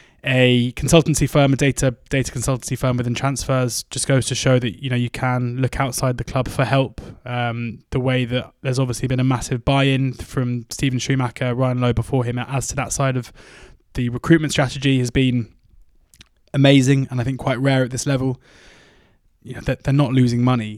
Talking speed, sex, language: 195 wpm, male, English